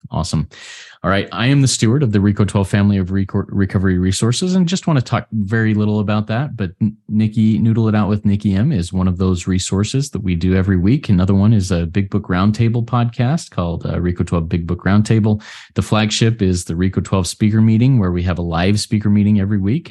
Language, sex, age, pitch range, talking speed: English, male, 30-49, 95-110 Hz, 220 wpm